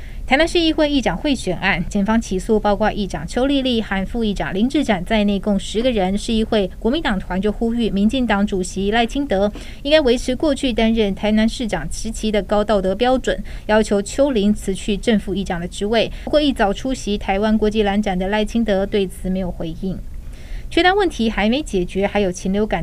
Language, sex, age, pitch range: Chinese, female, 20-39, 195-230 Hz